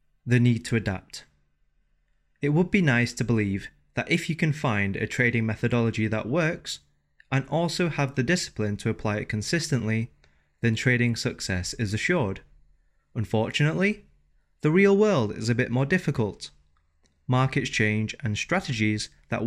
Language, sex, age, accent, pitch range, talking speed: English, male, 20-39, British, 100-135 Hz, 150 wpm